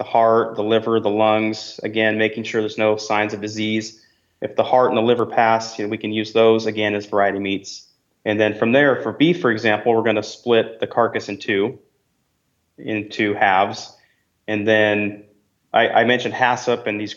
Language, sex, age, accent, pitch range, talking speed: English, male, 30-49, American, 105-120 Hz, 205 wpm